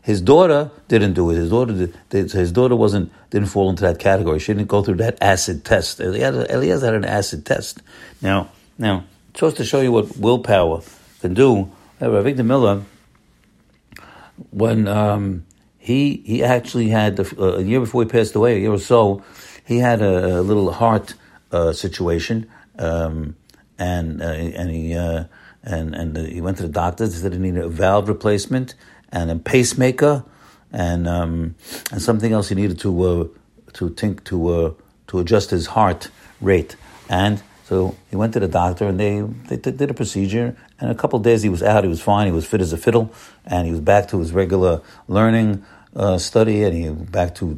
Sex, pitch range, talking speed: male, 90-115 Hz, 195 wpm